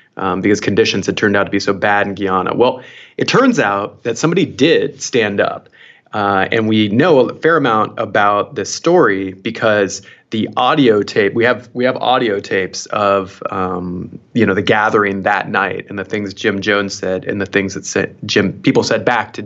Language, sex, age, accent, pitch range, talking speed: English, male, 30-49, American, 100-130 Hz, 205 wpm